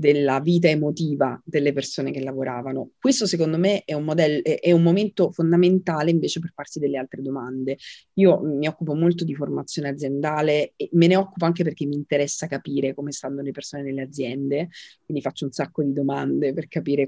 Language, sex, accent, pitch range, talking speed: Italian, female, native, 140-170 Hz, 185 wpm